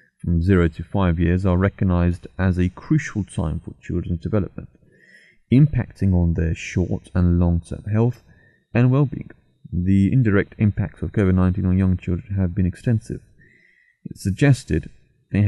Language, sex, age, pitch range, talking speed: English, male, 30-49, 90-110 Hz, 145 wpm